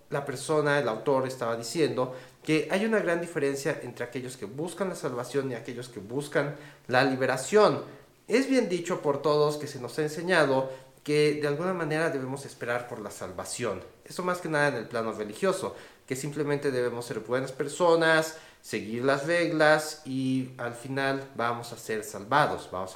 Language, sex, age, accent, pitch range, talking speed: Spanish, male, 40-59, Mexican, 130-170 Hz, 175 wpm